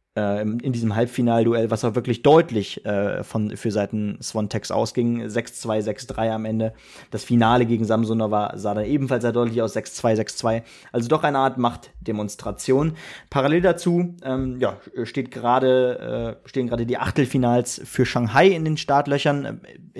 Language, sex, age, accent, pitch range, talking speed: German, male, 30-49, German, 115-135 Hz, 150 wpm